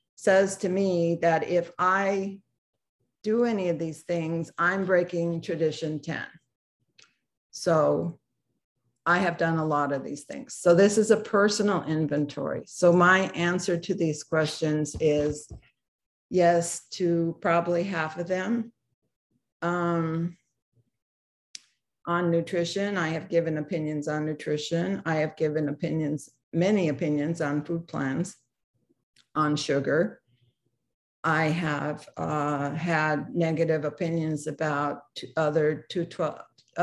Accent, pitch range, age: American, 155-180 Hz, 50-69